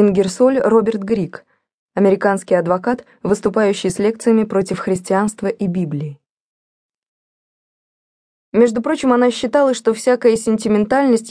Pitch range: 185-230 Hz